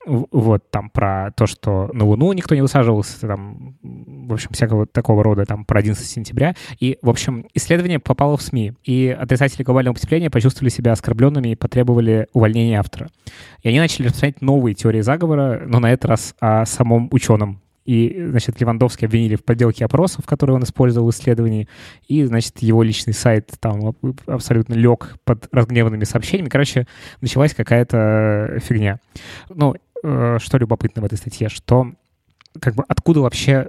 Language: Russian